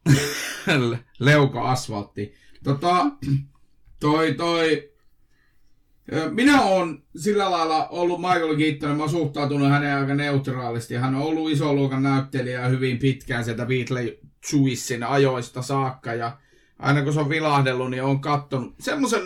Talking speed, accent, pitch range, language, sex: 120 wpm, native, 130-155 Hz, Finnish, male